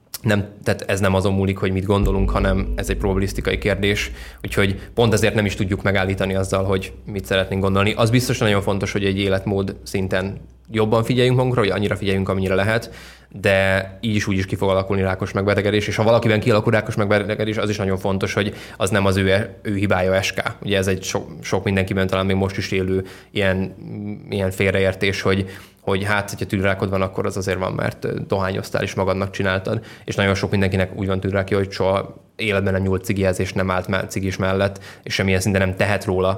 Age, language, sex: 20-39, Hungarian, male